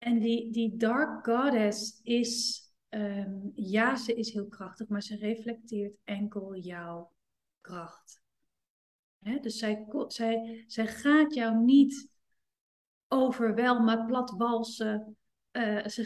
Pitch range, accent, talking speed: 200-240 Hz, Dutch, 115 wpm